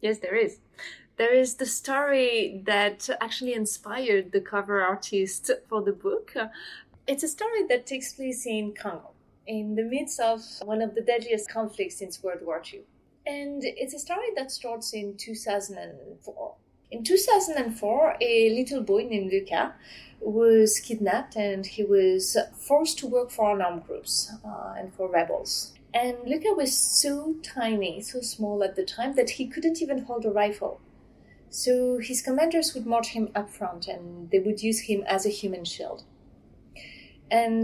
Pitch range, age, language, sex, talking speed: 205-275 Hz, 30-49, English, female, 165 wpm